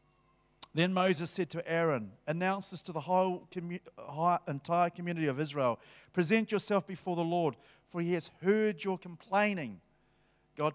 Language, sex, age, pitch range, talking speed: English, male, 50-69, 165-210 Hz, 145 wpm